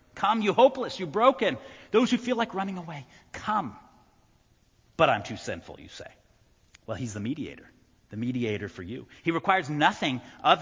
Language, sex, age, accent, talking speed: English, male, 40-59, American, 170 wpm